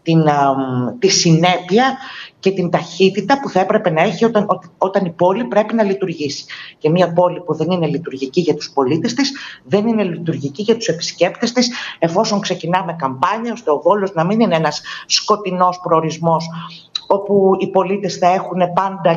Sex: female